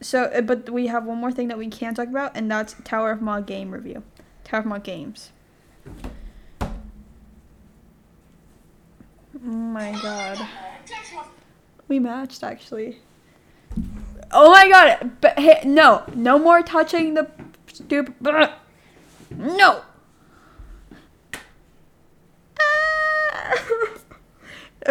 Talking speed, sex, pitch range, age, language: 100 wpm, female, 225-315 Hz, 10-29, English